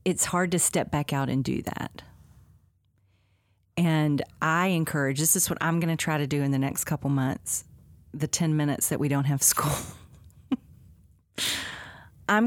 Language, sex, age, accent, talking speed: English, female, 40-59, American, 170 wpm